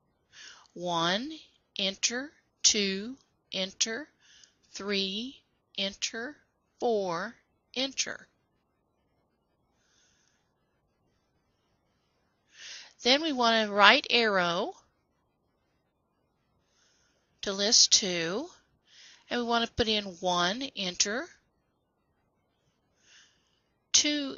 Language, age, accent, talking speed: English, 50-69, American, 65 wpm